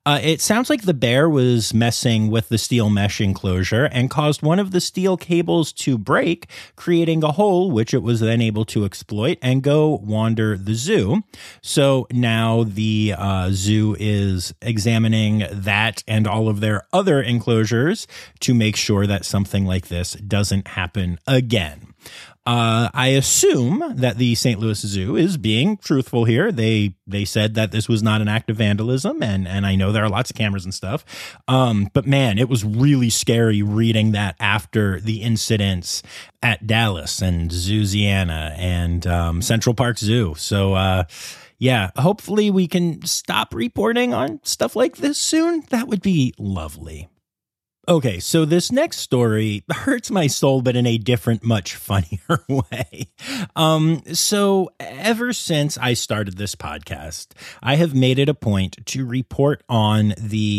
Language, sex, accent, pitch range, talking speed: English, male, American, 100-140 Hz, 165 wpm